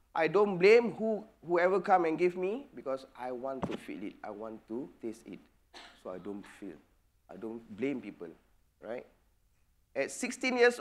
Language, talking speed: English, 180 wpm